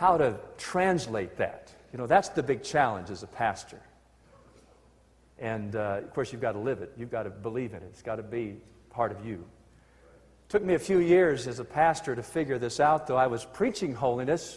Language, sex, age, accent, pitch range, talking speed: English, male, 50-69, American, 110-155 Hz, 220 wpm